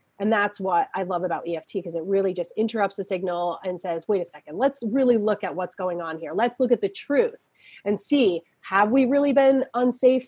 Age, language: 30-49, English